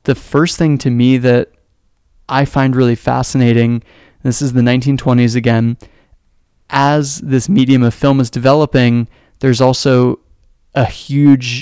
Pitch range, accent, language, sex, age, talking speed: 120-135 Hz, American, English, male, 20-39, 135 wpm